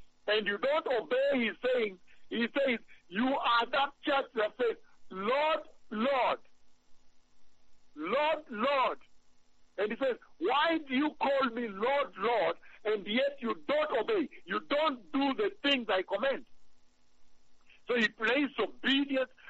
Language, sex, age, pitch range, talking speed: English, male, 60-79, 220-290 Hz, 135 wpm